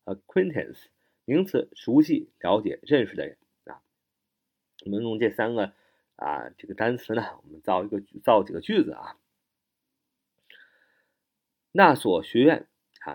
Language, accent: Chinese, native